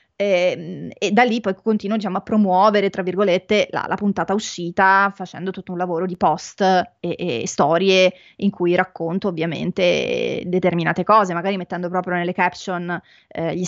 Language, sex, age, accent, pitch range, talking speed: Italian, female, 20-39, native, 180-210 Hz, 160 wpm